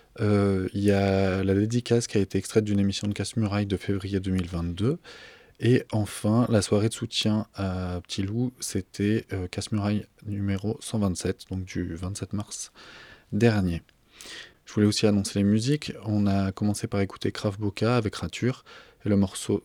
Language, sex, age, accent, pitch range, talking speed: French, male, 20-39, French, 100-115 Hz, 165 wpm